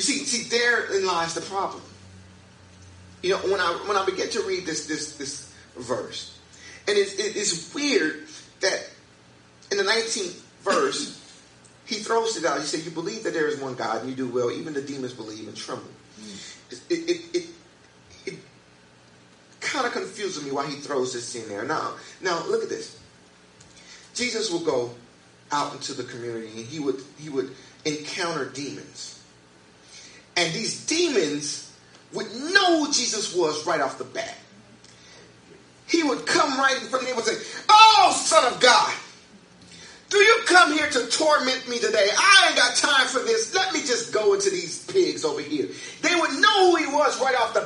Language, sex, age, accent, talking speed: English, male, 30-49, American, 180 wpm